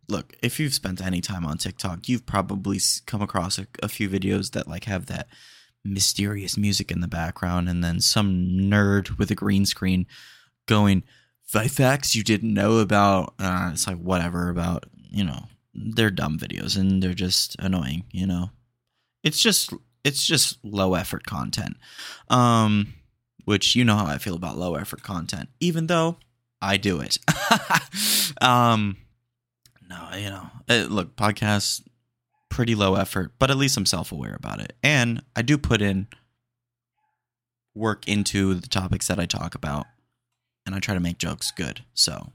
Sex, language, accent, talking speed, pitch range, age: male, English, American, 165 wpm, 95-120 Hz, 20-39